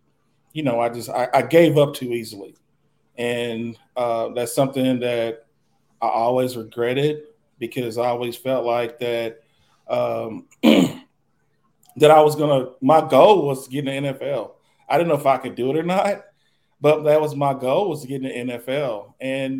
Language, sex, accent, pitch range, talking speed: English, male, American, 115-140 Hz, 180 wpm